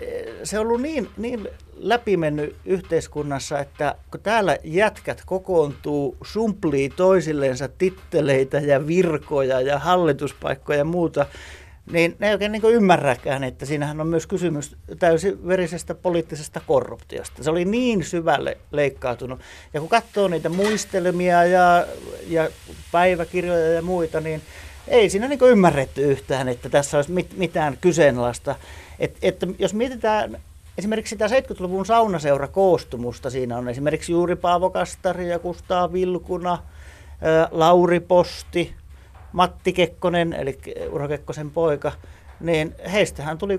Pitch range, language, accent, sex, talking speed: 140-185 Hz, Finnish, native, male, 125 wpm